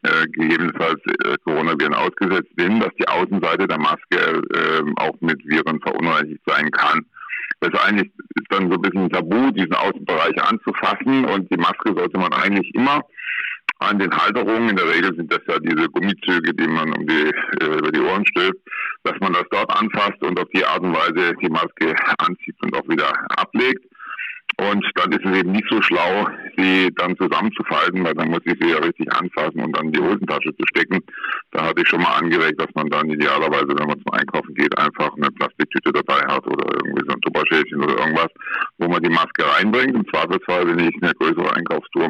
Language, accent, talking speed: German, German, 200 wpm